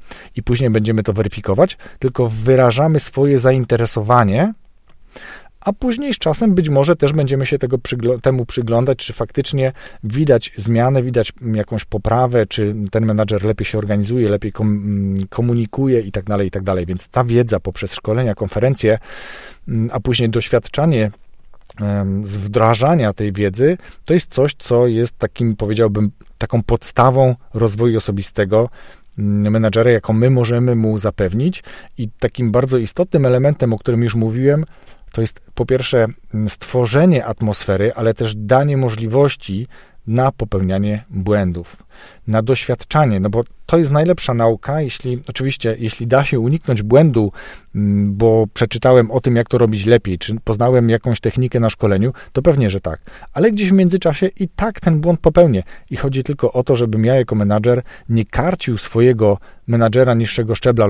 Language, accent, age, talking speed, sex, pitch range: Polish, native, 40-59, 150 wpm, male, 110-130 Hz